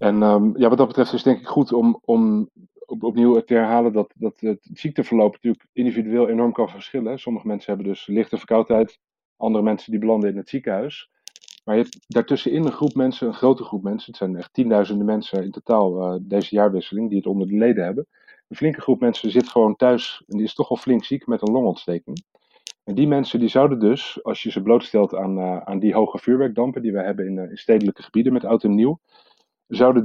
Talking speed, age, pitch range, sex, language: 225 wpm, 40-59, 105-125 Hz, male, Dutch